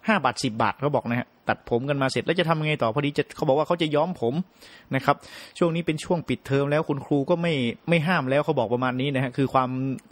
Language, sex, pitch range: Thai, male, 125-160 Hz